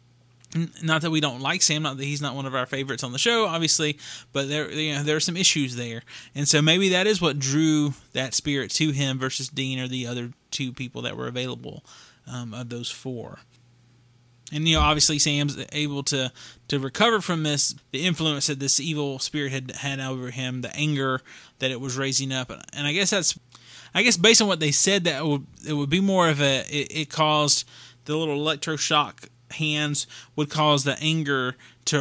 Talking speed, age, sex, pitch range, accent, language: 205 wpm, 20-39, male, 130-160 Hz, American, English